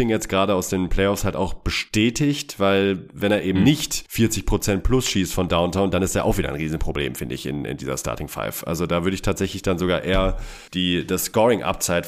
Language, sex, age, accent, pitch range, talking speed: German, male, 30-49, German, 85-105 Hz, 215 wpm